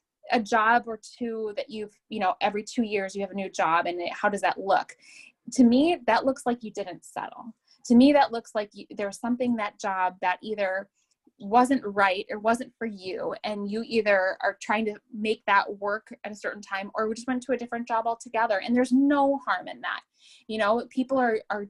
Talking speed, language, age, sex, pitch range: 220 wpm, English, 10-29, female, 190-245 Hz